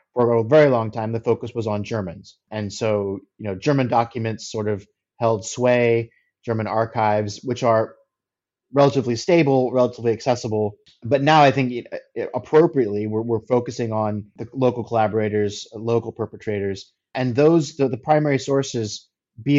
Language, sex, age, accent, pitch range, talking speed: English, male, 30-49, American, 105-130 Hz, 150 wpm